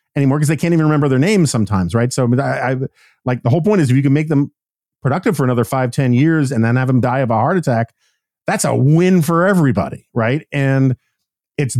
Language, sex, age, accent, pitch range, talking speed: English, male, 50-69, American, 115-150 Hz, 235 wpm